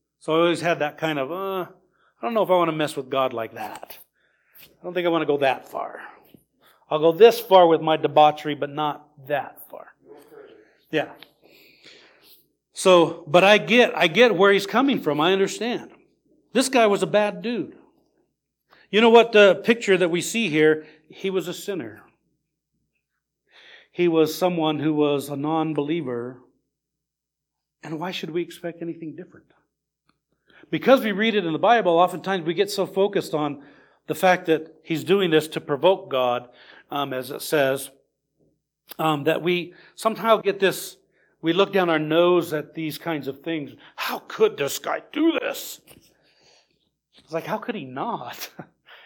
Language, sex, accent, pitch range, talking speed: English, male, American, 155-205 Hz, 175 wpm